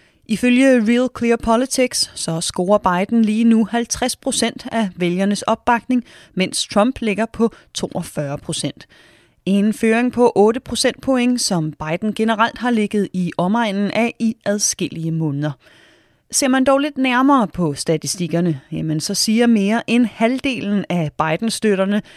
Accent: native